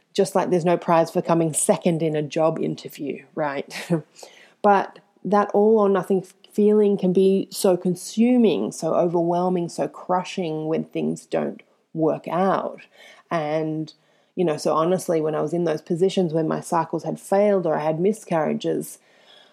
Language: English